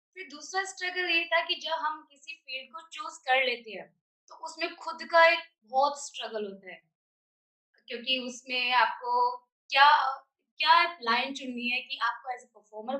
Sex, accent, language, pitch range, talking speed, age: female, Indian, English, 245-310 Hz, 170 wpm, 20-39